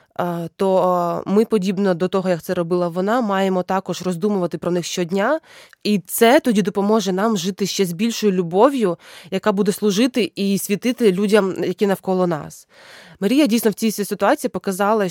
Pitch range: 185-235 Hz